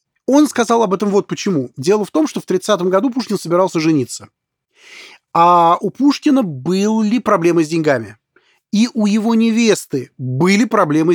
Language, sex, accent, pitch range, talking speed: Russian, male, native, 155-215 Hz, 155 wpm